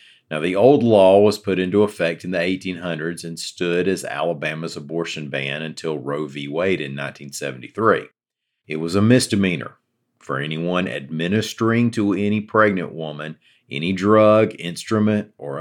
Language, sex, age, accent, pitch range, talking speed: English, male, 50-69, American, 75-100 Hz, 145 wpm